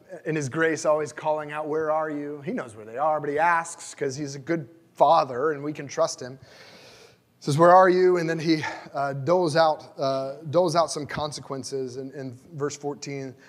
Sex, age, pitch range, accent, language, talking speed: male, 30-49, 130-160 Hz, American, English, 210 wpm